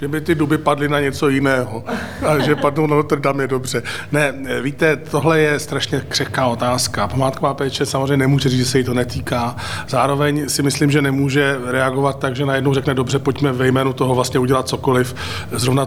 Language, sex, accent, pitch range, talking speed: Czech, male, native, 125-145 Hz, 190 wpm